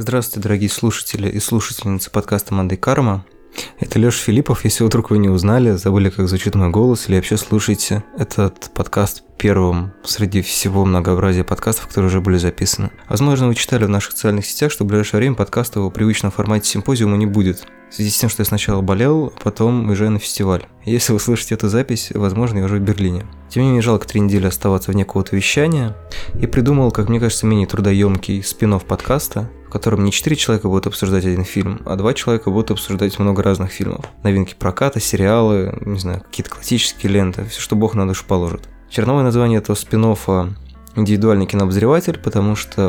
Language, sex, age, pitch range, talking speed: Russian, male, 20-39, 95-110 Hz, 185 wpm